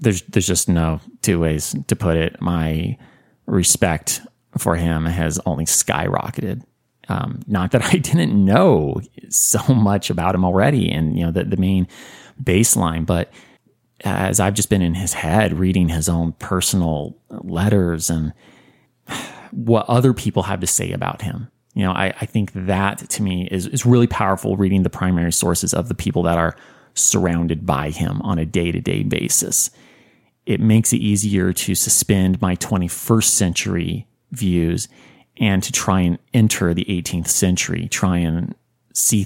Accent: American